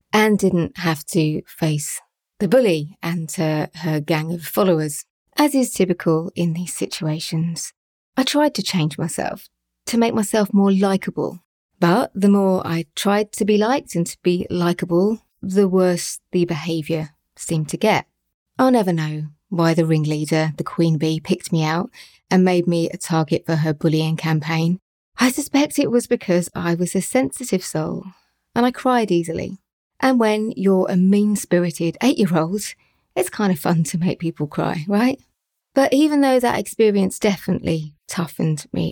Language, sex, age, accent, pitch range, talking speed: English, female, 30-49, British, 160-210 Hz, 165 wpm